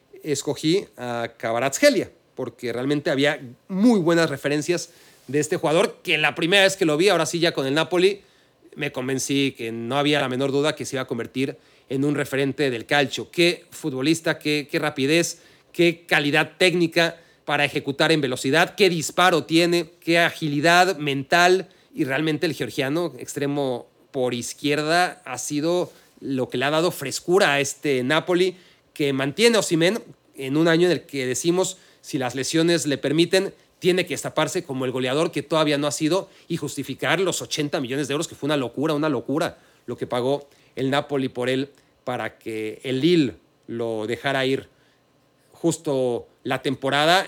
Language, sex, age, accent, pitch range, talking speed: Spanish, male, 40-59, Mexican, 135-170 Hz, 175 wpm